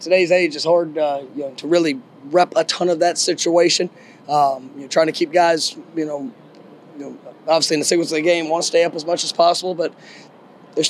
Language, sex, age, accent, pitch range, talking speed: English, male, 20-39, American, 150-170 Hz, 230 wpm